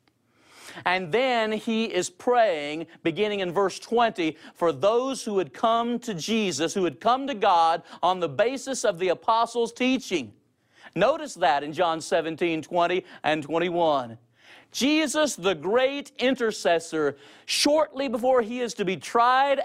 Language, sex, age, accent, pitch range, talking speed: English, male, 40-59, American, 150-230 Hz, 145 wpm